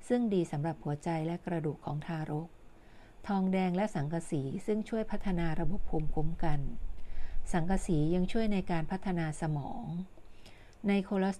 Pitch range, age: 155-185 Hz, 60-79